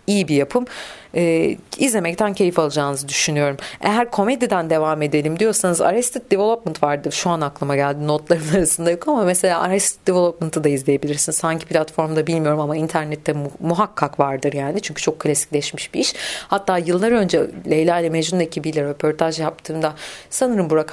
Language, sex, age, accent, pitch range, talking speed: Turkish, female, 40-59, native, 150-180 Hz, 155 wpm